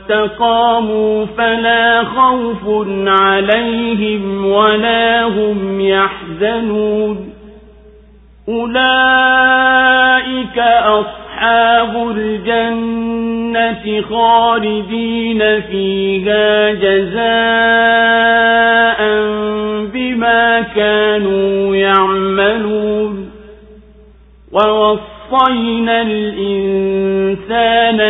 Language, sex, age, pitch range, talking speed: English, male, 50-69, 205-230 Hz, 40 wpm